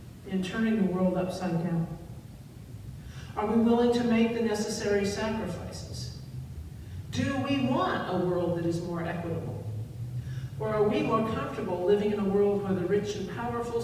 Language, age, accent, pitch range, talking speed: English, 50-69, American, 120-205 Hz, 160 wpm